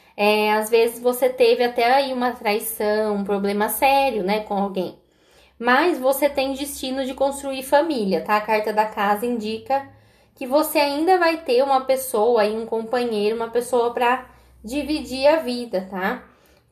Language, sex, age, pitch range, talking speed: Portuguese, female, 10-29, 220-270 Hz, 165 wpm